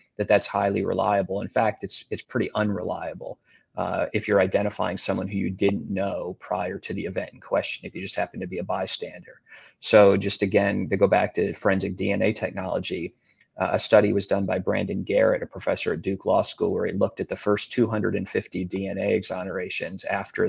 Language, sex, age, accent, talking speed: English, male, 30-49, American, 195 wpm